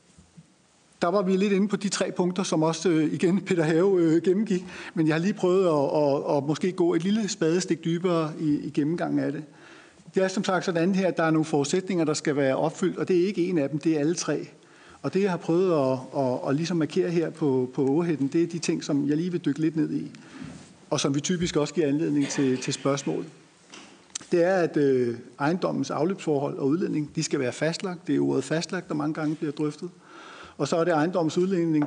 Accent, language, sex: native, Danish, male